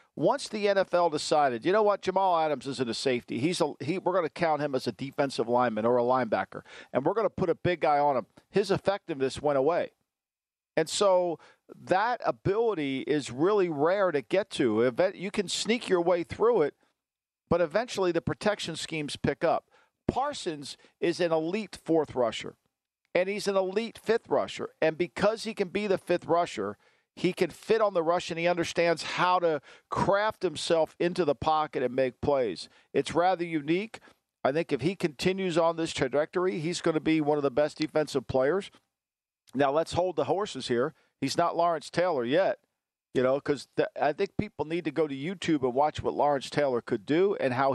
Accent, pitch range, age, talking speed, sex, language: American, 145-185 Hz, 50-69, 195 wpm, male, English